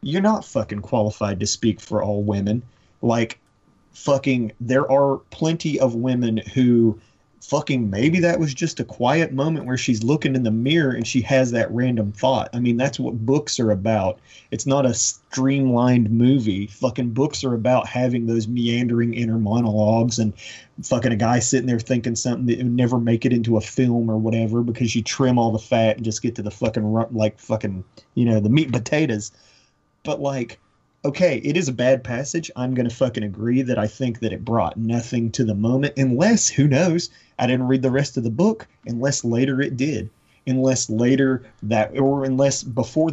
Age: 30-49